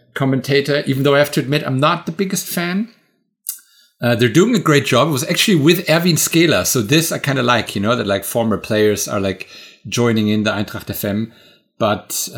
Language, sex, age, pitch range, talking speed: English, male, 50-69, 110-145 Hz, 215 wpm